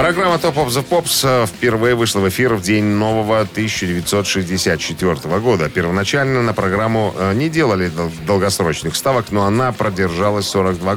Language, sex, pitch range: Russian, male, 95-120 Hz